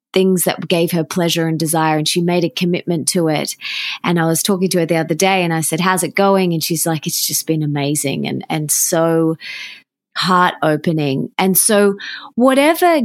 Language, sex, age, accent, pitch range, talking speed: English, female, 20-39, Australian, 165-205 Hz, 200 wpm